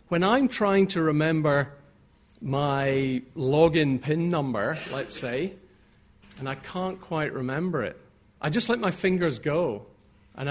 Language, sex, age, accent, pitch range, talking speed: English, male, 50-69, British, 130-180 Hz, 135 wpm